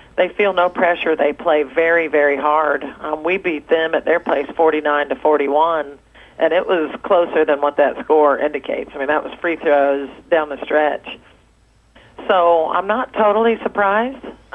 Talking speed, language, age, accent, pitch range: 180 wpm, English, 40-59, American, 150-180 Hz